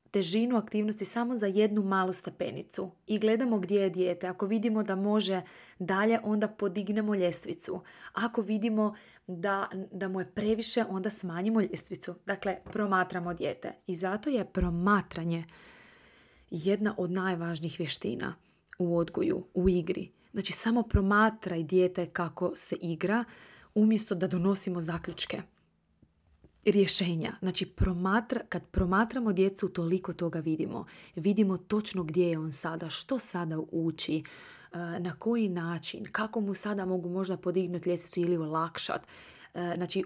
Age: 20-39